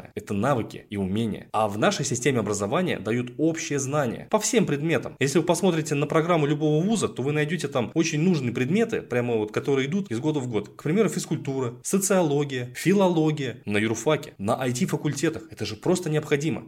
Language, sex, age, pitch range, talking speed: Russian, male, 20-39, 115-160 Hz, 185 wpm